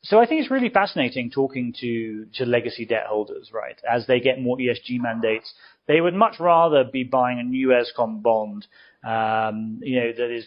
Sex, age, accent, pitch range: male, 30-49, British, 115-135 Hz